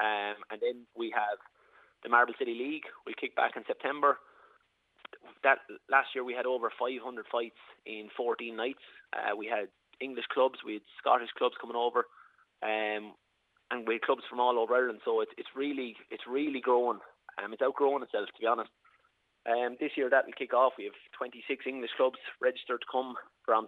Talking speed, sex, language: 190 wpm, male, English